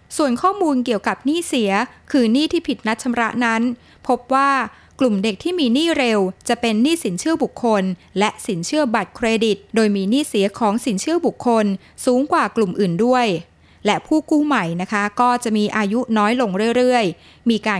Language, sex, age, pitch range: Thai, female, 20-39, 205-265 Hz